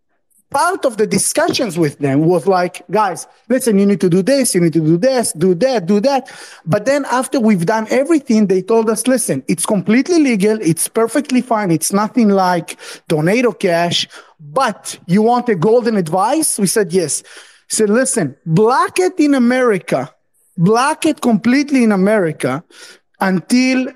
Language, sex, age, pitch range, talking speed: English, male, 30-49, 185-250 Hz, 165 wpm